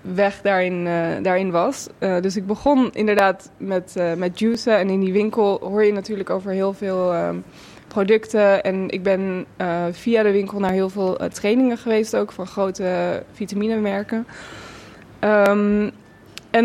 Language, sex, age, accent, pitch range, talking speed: Dutch, female, 20-39, Dutch, 190-220 Hz, 165 wpm